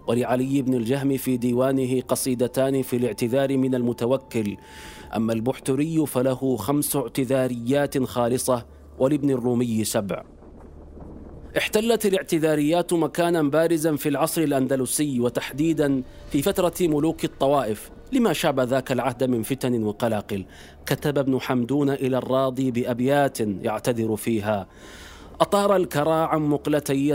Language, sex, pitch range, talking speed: Arabic, male, 125-155 Hz, 110 wpm